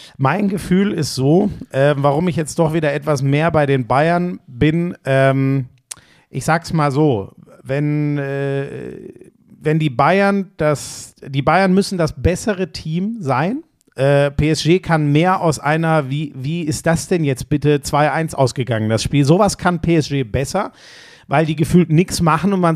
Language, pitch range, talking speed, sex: German, 140-175 Hz, 165 wpm, male